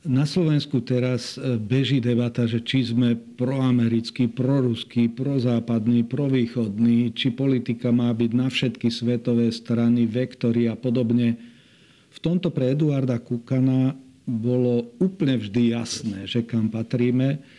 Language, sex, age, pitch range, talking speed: Slovak, male, 40-59, 115-130 Hz, 120 wpm